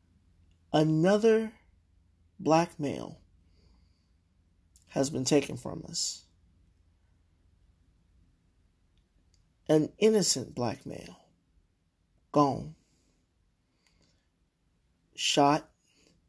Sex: male